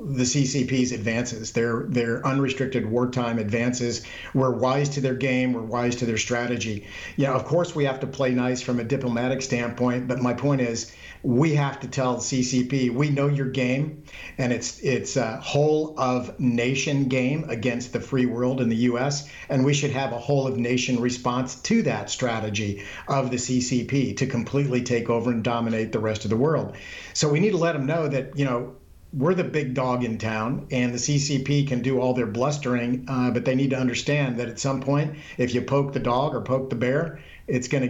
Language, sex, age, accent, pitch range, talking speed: English, male, 50-69, American, 120-140 Hz, 210 wpm